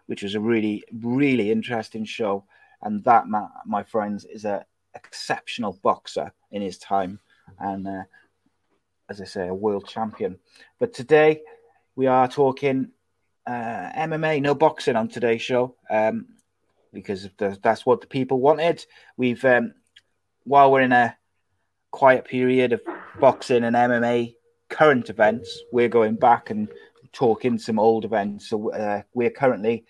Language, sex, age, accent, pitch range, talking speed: English, male, 30-49, British, 105-130 Hz, 145 wpm